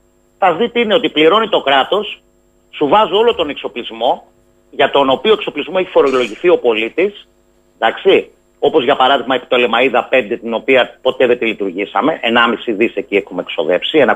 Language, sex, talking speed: Greek, male, 160 wpm